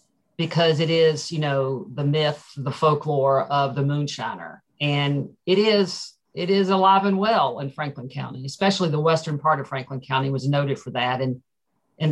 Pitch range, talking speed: 135-160 Hz, 180 wpm